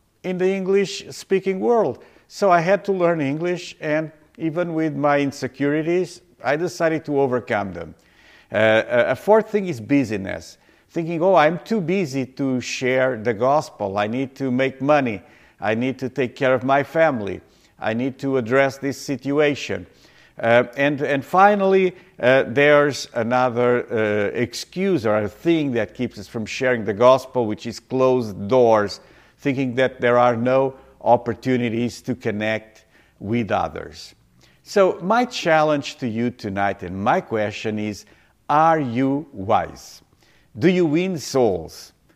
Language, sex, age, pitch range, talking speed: English, male, 50-69, 115-155 Hz, 150 wpm